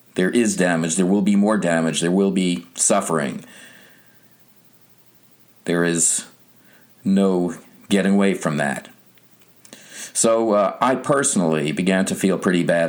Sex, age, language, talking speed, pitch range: male, 50-69, English, 130 wpm, 85-115 Hz